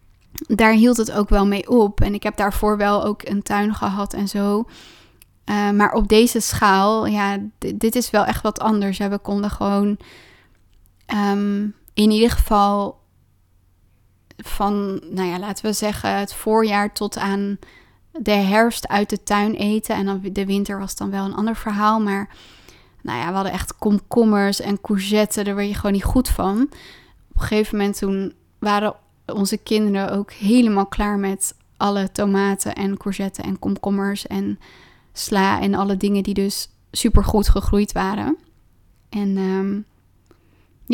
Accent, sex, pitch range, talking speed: Dutch, female, 195-215 Hz, 165 wpm